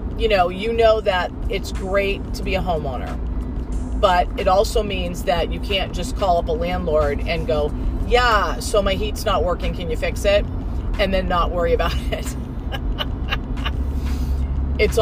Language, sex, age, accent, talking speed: English, female, 30-49, American, 170 wpm